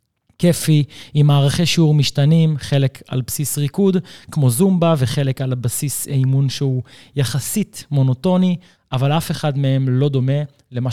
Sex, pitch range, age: male, 130-155 Hz, 20-39